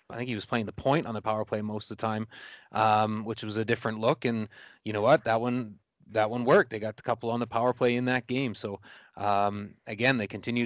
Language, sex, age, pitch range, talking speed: English, male, 30-49, 110-125 Hz, 265 wpm